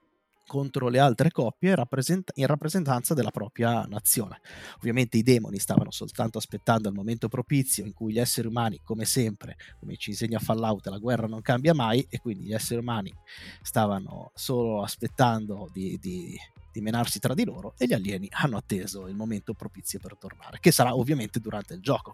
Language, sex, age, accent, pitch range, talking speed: Italian, male, 30-49, native, 105-130 Hz, 175 wpm